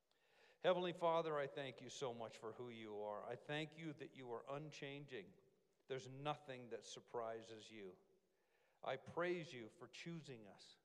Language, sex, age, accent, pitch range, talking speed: English, male, 50-69, American, 125-160 Hz, 160 wpm